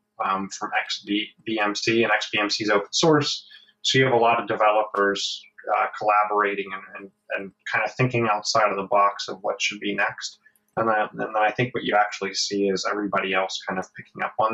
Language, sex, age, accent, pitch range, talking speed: English, male, 20-39, American, 100-125 Hz, 200 wpm